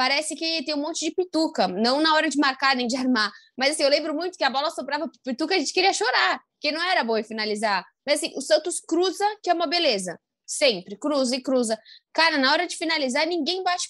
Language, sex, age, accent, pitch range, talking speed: Portuguese, female, 10-29, Brazilian, 255-335 Hz, 240 wpm